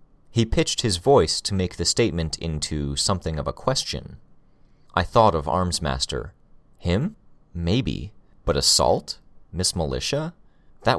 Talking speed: 130 wpm